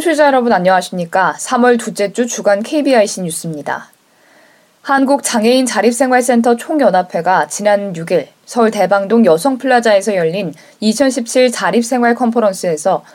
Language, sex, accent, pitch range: Korean, female, native, 190-245 Hz